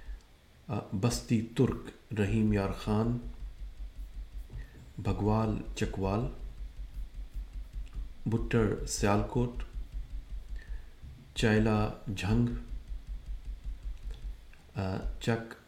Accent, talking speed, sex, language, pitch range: Indian, 45 wpm, male, English, 70-110 Hz